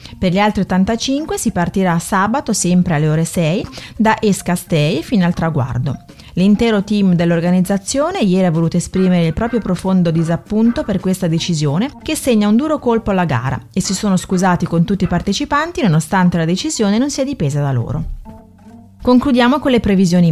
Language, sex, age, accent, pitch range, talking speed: Italian, female, 30-49, native, 175-225 Hz, 170 wpm